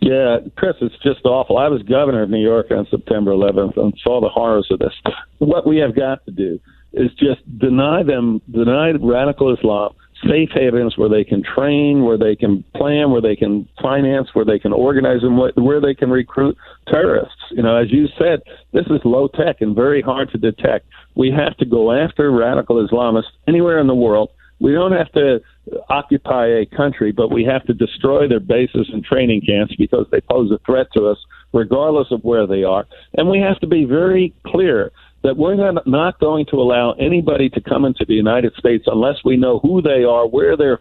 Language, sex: English, male